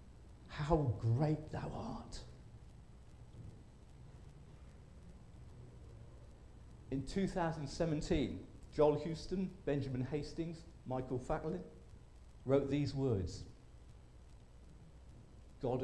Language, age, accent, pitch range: English, 50-69, British, 115-165 Hz